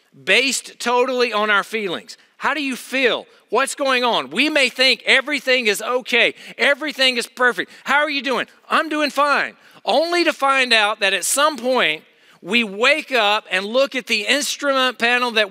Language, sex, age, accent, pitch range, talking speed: English, male, 40-59, American, 200-255 Hz, 180 wpm